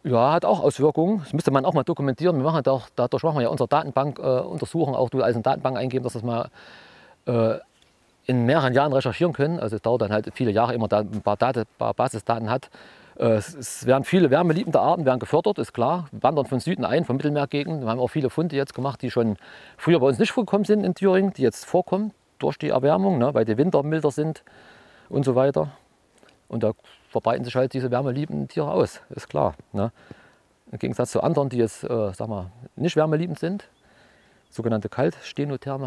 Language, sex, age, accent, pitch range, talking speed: German, male, 40-59, German, 110-150 Hz, 210 wpm